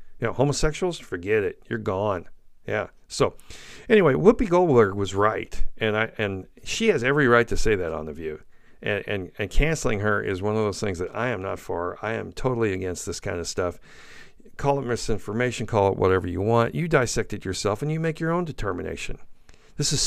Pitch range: 100-140 Hz